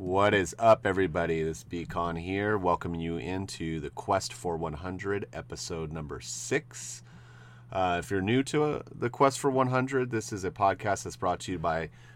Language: English